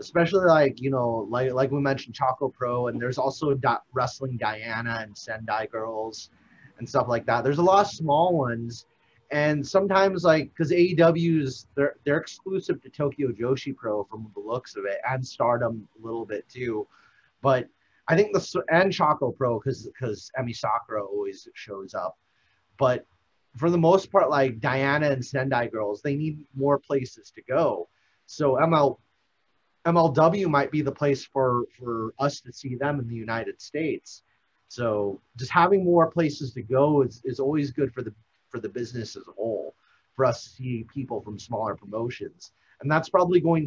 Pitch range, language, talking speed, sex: 115-150 Hz, English, 175 wpm, male